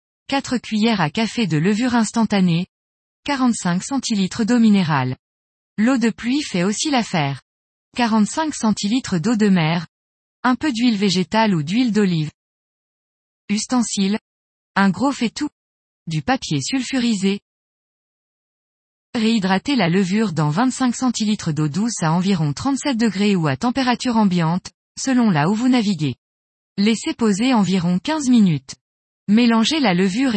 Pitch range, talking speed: 185-245 Hz, 130 wpm